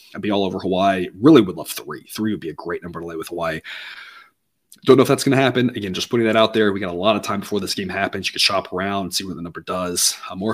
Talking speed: 300 wpm